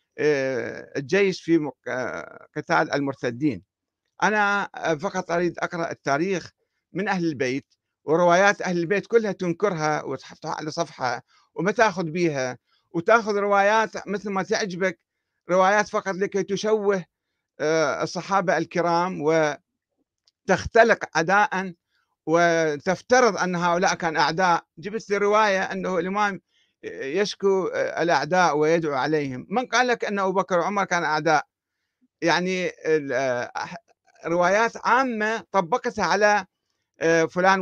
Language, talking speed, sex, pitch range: Arabic, 105 wpm, male, 165-210 Hz